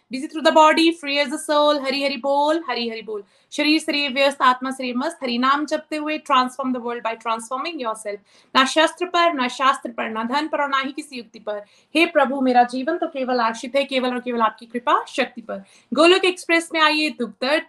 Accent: native